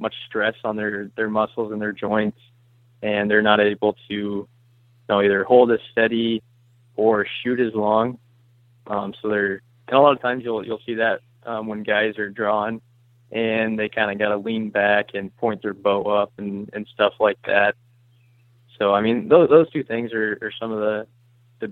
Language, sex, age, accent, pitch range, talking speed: English, male, 20-39, American, 105-120 Hz, 200 wpm